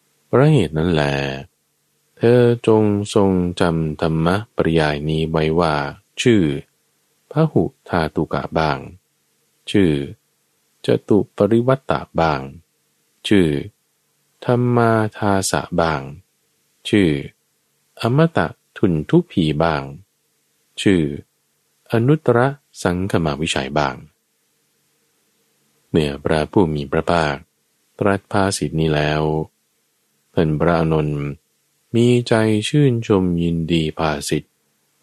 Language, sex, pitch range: Thai, male, 75-115 Hz